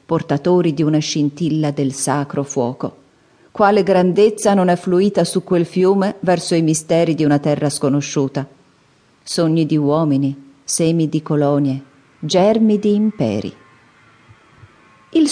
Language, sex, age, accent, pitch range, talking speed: Italian, female, 40-59, native, 150-200 Hz, 125 wpm